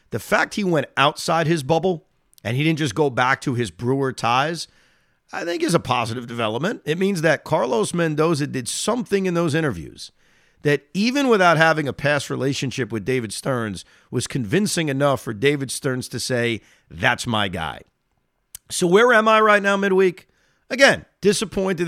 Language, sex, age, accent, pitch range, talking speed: English, male, 50-69, American, 130-175 Hz, 175 wpm